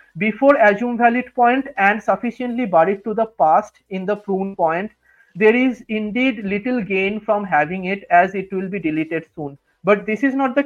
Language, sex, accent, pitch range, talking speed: English, male, Indian, 185-245 Hz, 185 wpm